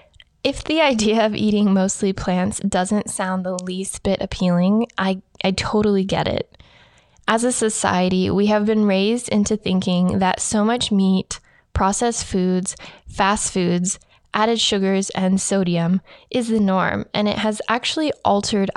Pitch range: 185-220 Hz